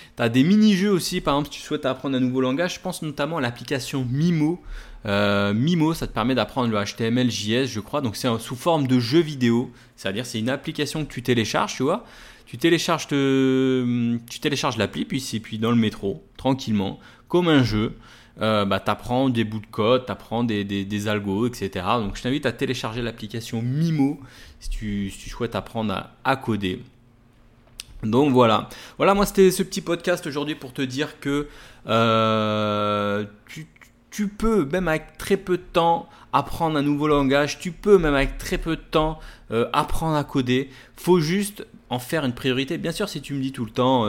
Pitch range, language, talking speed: 115-150 Hz, French, 200 wpm